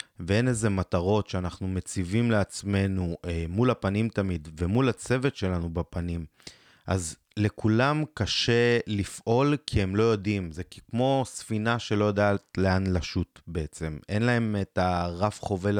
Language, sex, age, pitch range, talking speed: Hebrew, male, 30-49, 90-115 Hz, 135 wpm